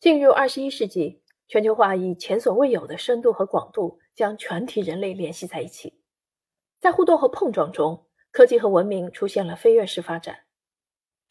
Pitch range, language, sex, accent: 190-295 Hz, Chinese, female, native